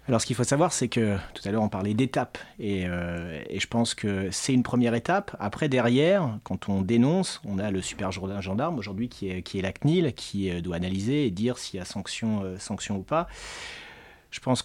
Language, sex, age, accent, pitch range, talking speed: French, male, 30-49, French, 100-130 Hz, 235 wpm